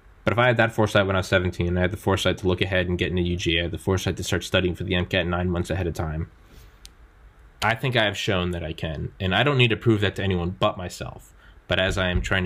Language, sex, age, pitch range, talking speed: English, male, 20-39, 85-105 Hz, 285 wpm